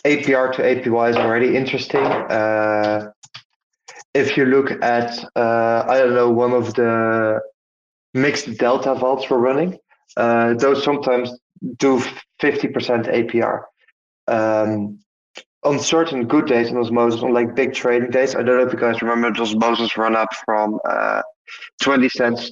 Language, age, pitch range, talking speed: English, 20-39, 115-135 Hz, 145 wpm